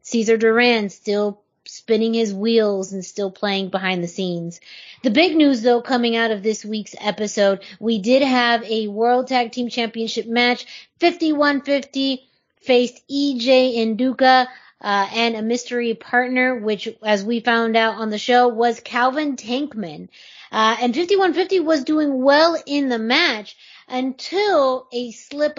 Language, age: English, 30-49